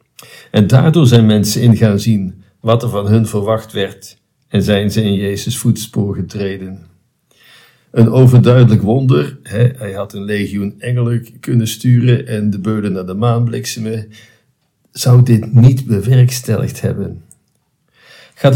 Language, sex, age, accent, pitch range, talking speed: Dutch, male, 50-69, Dutch, 105-130 Hz, 140 wpm